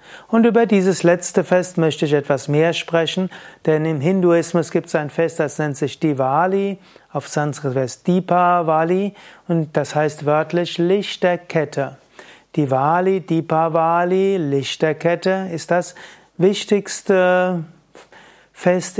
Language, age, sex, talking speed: German, 30-49, male, 115 wpm